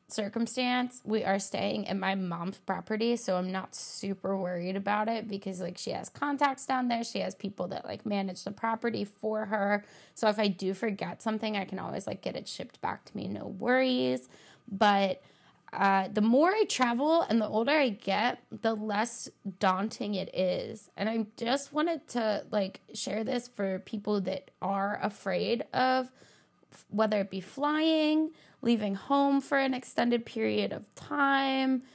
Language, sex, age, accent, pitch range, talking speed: English, female, 20-39, American, 195-245 Hz, 175 wpm